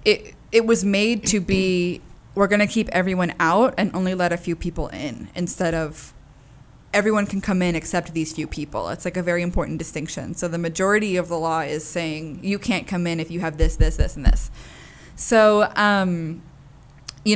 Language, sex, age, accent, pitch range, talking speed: English, female, 20-39, American, 160-185 Hz, 200 wpm